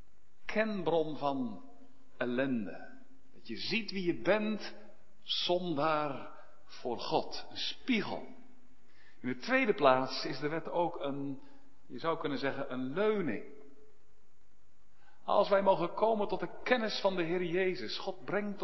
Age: 50-69